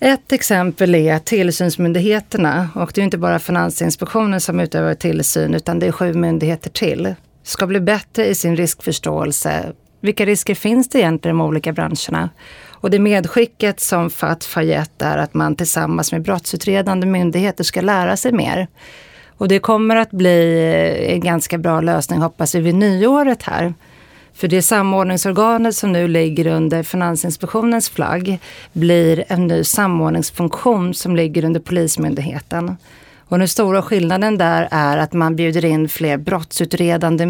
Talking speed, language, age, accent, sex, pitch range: 150 wpm, Swedish, 40-59, native, female, 165-195 Hz